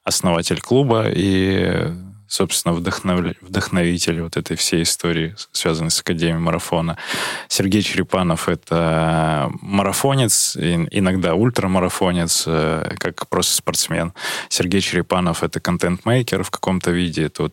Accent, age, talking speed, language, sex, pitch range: native, 20-39, 105 wpm, Russian, male, 85-105 Hz